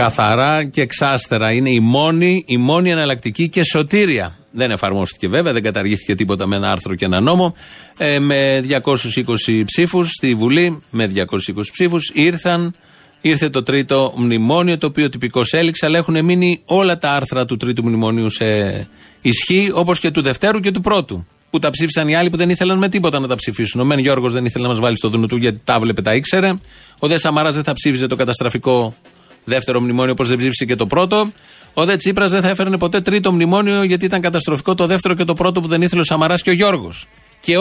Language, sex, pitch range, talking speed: Greek, male, 115-170 Hz, 205 wpm